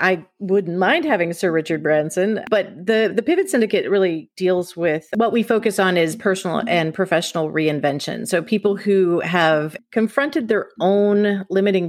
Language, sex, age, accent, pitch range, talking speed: English, female, 30-49, American, 160-200 Hz, 160 wpm